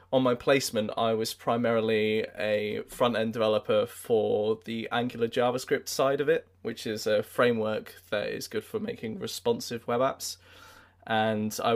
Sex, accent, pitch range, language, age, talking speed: male, British, 110-135 Hz, English, 20-39, 155 wpm